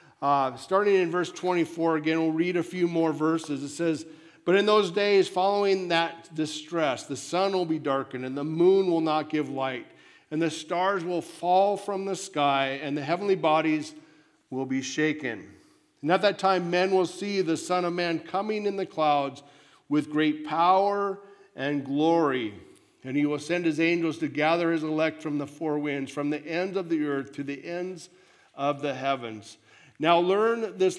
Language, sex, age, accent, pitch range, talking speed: English, male, 50-69, American, 145-175 Hz, 185 wpm